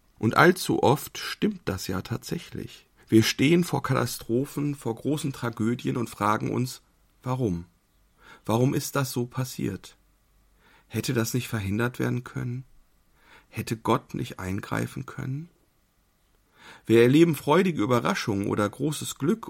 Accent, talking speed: German, 125 wpm